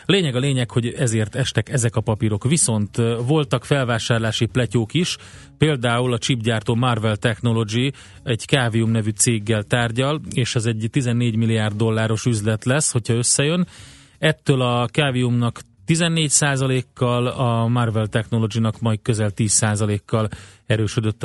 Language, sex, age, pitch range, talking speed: Hungarian, male, 30-49, 110-125 Hz, 135 wpm